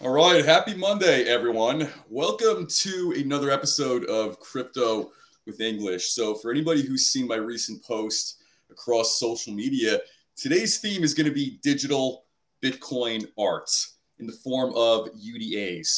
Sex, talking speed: male, 145 wpm